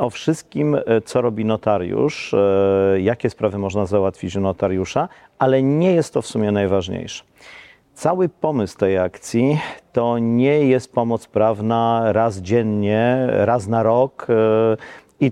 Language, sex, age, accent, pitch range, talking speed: Polish, male, 50-69, native, 105-125 Hz, 130 wpm